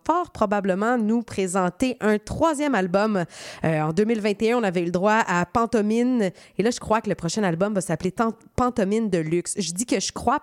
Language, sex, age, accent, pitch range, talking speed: French, female, 20-39, Canadian, 180-230 Hz, 200 wpm